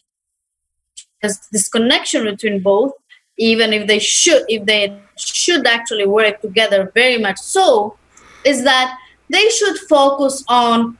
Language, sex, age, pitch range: English, female, 30-49, 225-310 Hz